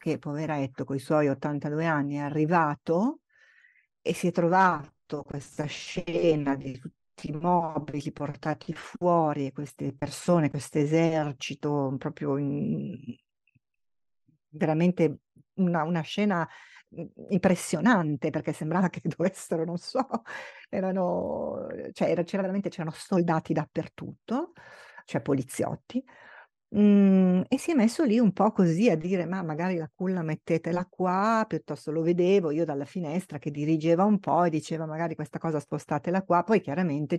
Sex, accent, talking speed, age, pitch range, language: female, native, 135 wpm, 50-69, 145-180 Hz, Italian